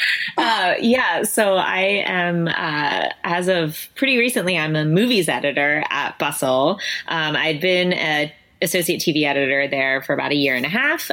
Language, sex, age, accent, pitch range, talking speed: English, female, 20-39, American, 145-185 Hz, 165 wpm